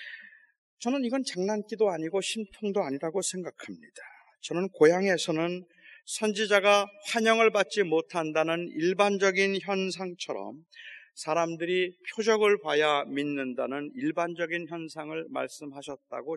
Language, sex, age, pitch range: Korean, male, 40-59, 160-205 Hz